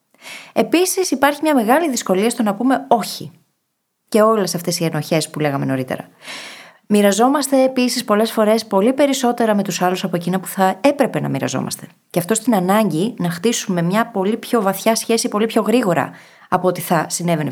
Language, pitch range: Greek, 175-245 Hz